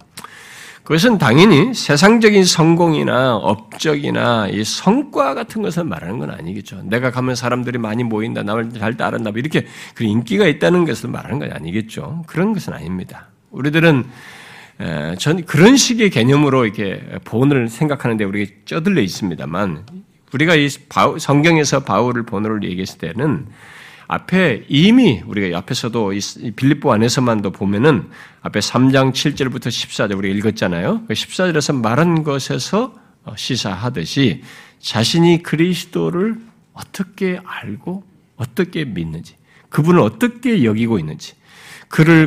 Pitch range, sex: 115-170 Hz, male